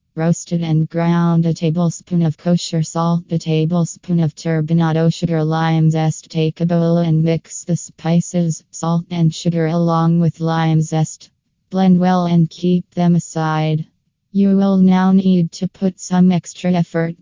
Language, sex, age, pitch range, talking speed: English, female, 20-39, 165-180 Hz, 155 wpm